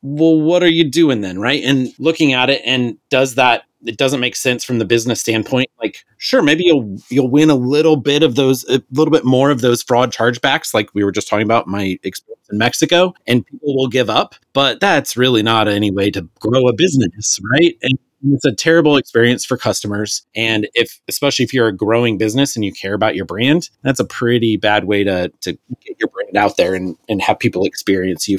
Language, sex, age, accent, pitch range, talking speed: English, male, 30-49, American, 110-140 Hz, 220 wpm